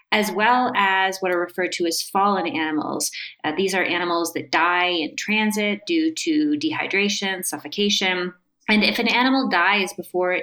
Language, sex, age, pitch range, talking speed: English, female, 30-49, 170-215 Hz, 160 wpm